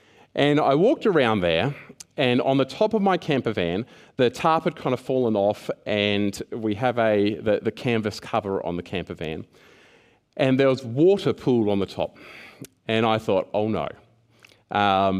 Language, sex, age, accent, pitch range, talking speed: English, male, 30-49, Australian, 100-130 Hz, 180 wpm